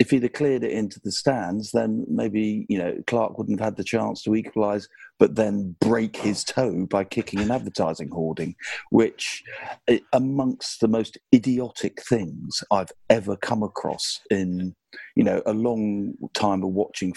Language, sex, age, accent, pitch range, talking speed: English, male, 50-69, British, 100-125 Hz, 170 wpm